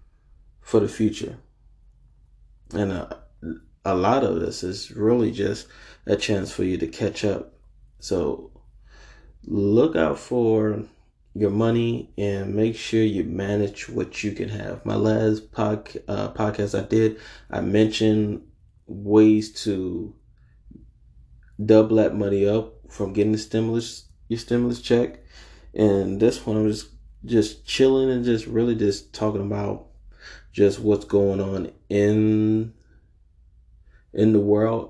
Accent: American